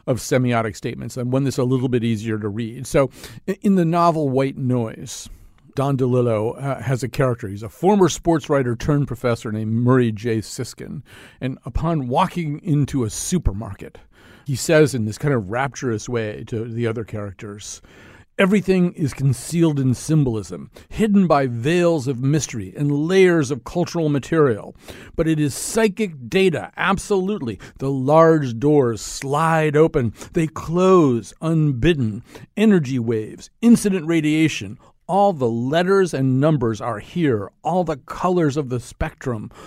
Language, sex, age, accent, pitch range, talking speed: English, male, 50-69, American, 120-165 Hz, 150 wpm